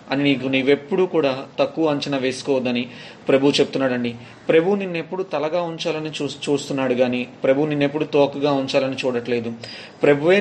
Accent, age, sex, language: native, 30-49, male, Telugu